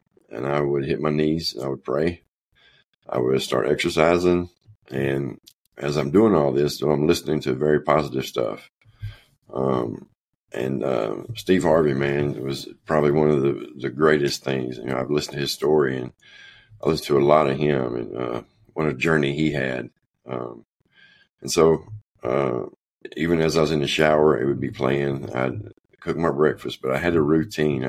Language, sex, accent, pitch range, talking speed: English, male, American, 65-80 Hz, 185 wpm